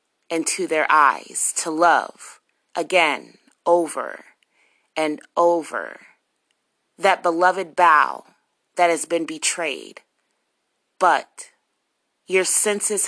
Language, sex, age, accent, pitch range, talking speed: English, female, 30-49, American, 165-205 Hz, 85 wpm